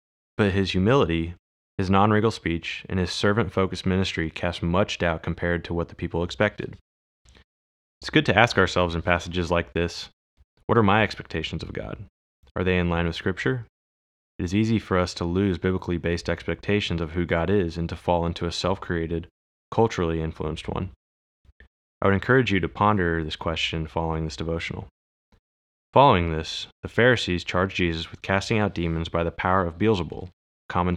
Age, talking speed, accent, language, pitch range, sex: 20-39, 170 wpm, American, English, 80-95 Hz, male